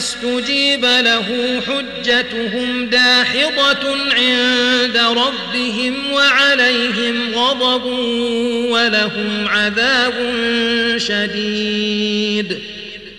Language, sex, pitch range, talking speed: Arabic, male, 230-245 Hz, 50 wpm